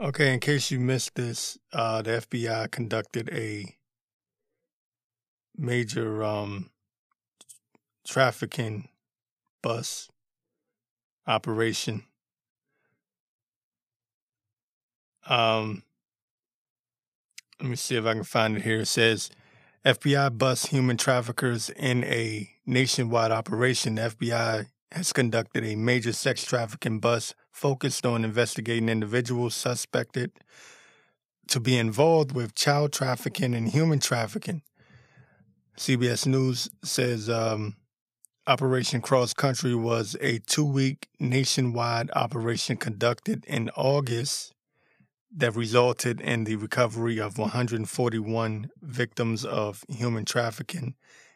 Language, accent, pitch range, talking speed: English, American, 115-130 Hz, 100 wpm